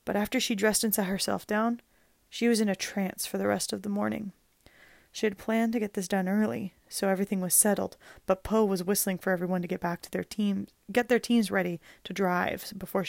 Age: 20-39